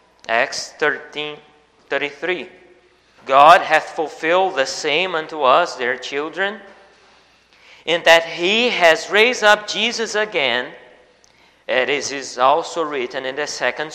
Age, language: 40-59, English